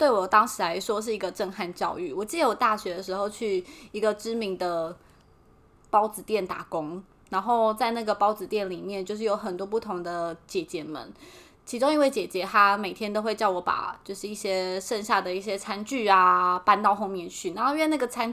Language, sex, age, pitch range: Chinese, female, 20-39, 190-245 Hz